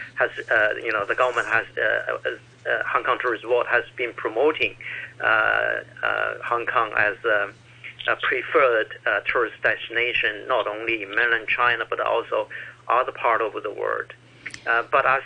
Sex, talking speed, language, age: male, 170 wpm, English, 50-69